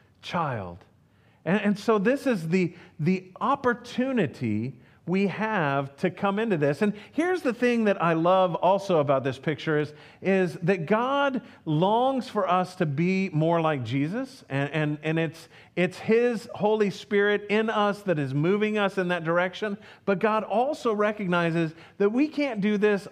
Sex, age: male, 40-59